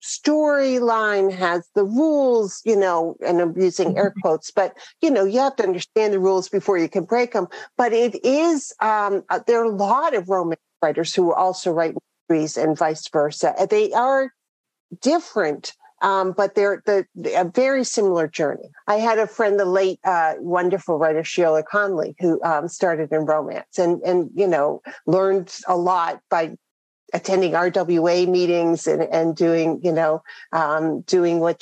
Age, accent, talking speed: 50-69, American, 170 wpm